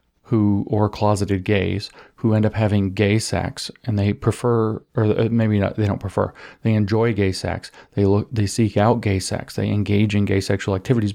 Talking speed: 195 wpm